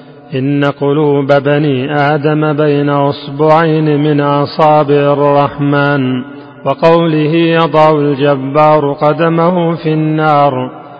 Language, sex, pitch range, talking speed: Arabic, male, 145-155 Hz, 80 wpm